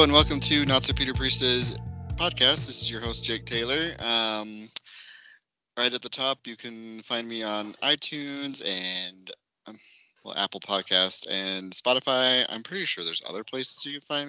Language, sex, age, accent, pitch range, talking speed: English, male, 20-39, American, 100-125 Hz, 170 wpm